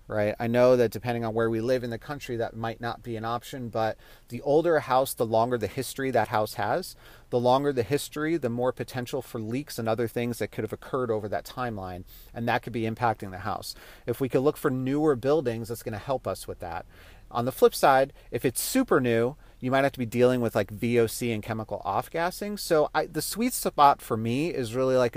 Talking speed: 235 wpm